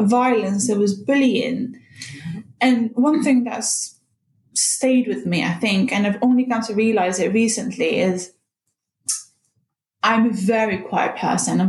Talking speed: 145 wpm